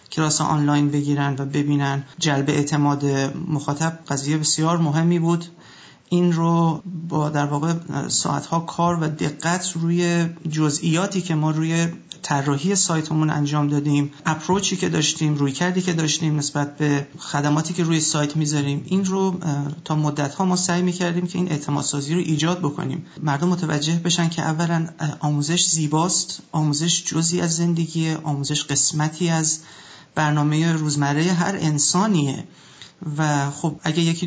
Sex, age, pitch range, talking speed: male, 30-49, 145-165 Hz, 140 wpm